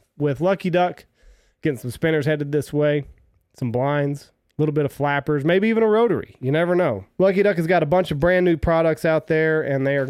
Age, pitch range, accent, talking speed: 30-49, 135-170 Hz, American, 225 wpm